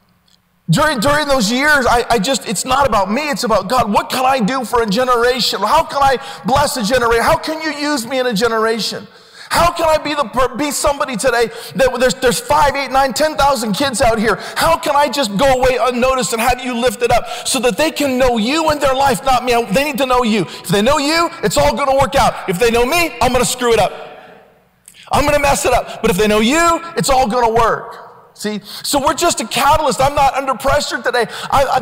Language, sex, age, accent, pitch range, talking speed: English, male, 40-59, American, 225-280 Hz, 245 wpm